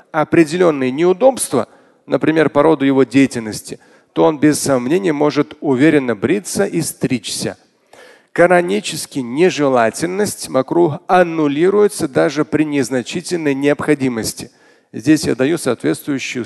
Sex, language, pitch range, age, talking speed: male, Russian, 135-180 Hz, 40-59, 100 wpm